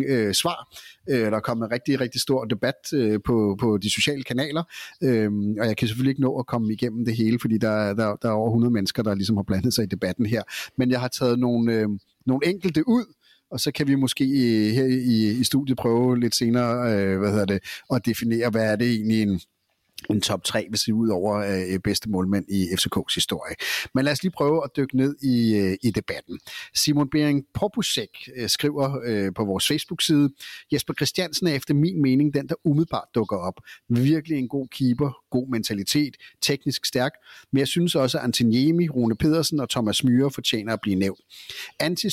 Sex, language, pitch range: male, Danish, 110-145 Hz